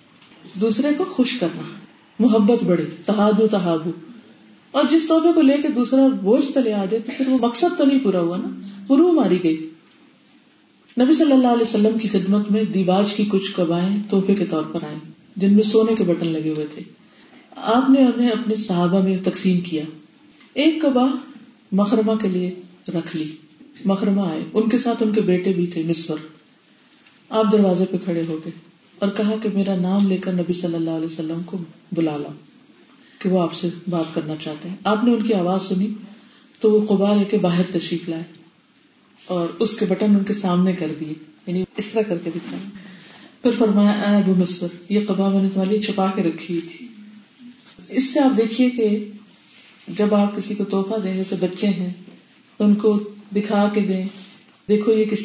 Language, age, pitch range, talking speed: Urdu, 40-59, 180-230 Hz, 150 wpm